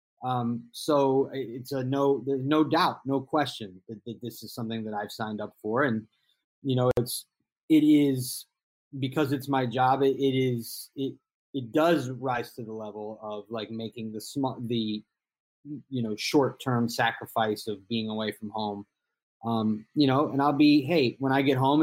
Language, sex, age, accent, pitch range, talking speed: English, male, 30-49, American, 110-140 Hz, 180 wpm